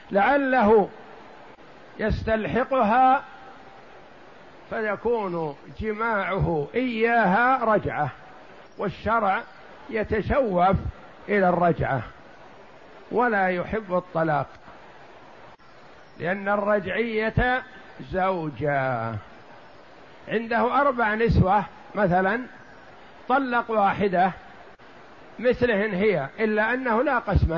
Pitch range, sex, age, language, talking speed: 175-225 Hz, male, 50-69, Arabic, 60 wpm